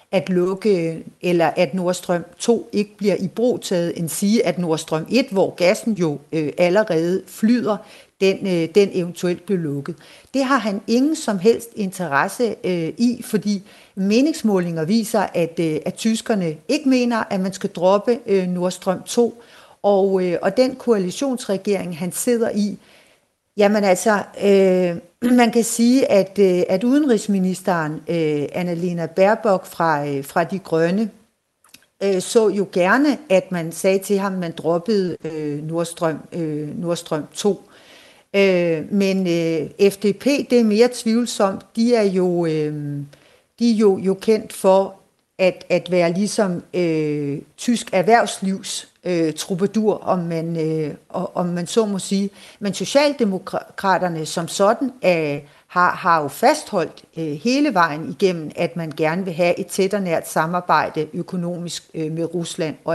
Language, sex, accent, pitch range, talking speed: Danish, female, native, 170-215 Hz, 150 wpm